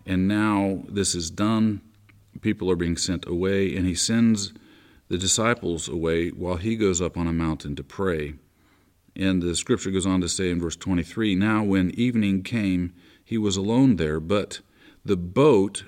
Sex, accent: male, American